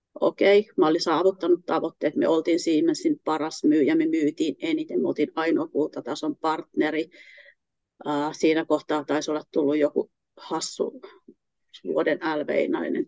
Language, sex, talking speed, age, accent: Finnish, female, 135 wpm, 30-49, native